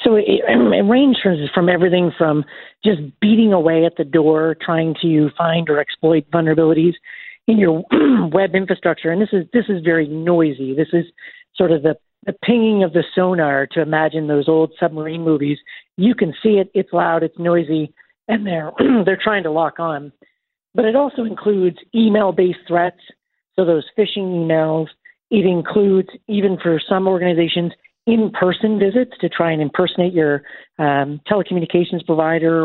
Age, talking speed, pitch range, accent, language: 40-59, 160 wpm, 160-205 Hz, American, English